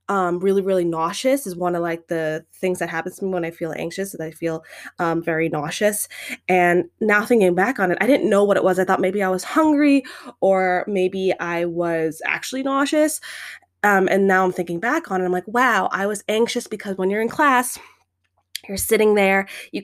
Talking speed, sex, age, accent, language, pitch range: 215 wpm, female, 20-39, American, English, 175-215 Hz